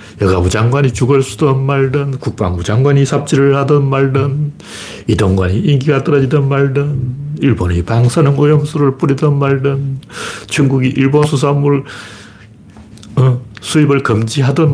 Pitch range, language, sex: 105-140 Hz, Korean, male